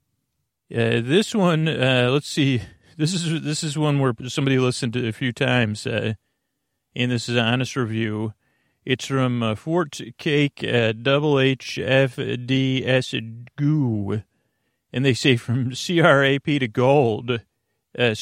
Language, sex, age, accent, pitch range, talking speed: English, male, 40-59, American, 115-140 Hz, 150 wpm